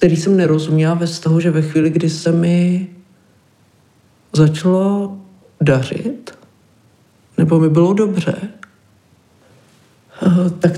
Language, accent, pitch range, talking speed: Czech, native, 160-180 Hz, 105 wpm